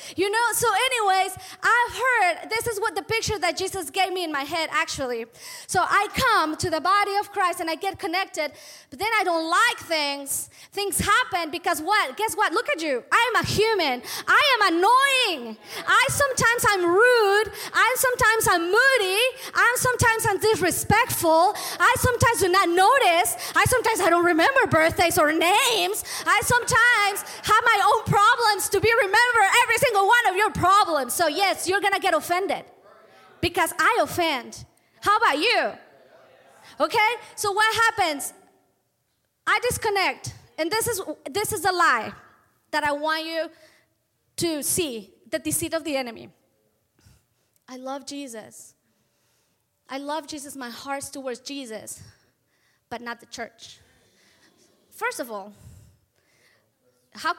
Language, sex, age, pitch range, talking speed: English, female, 20-39, 315-435 Hz, 155 wpm